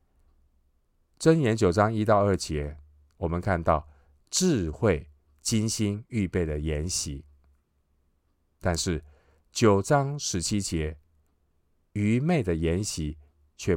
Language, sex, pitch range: Chinese, male, 75-90 Hz